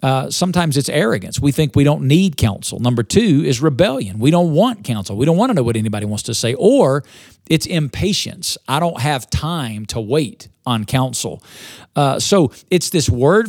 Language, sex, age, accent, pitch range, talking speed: English, male, 50-69, American, 125-165 Hz, 195 wpm